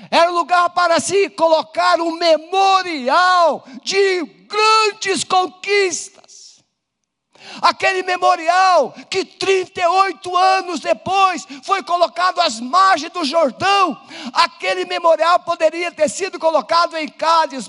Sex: male